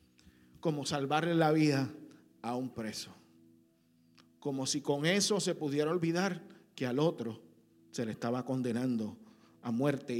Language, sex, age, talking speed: Spanish, male, 50-69, 135 wpm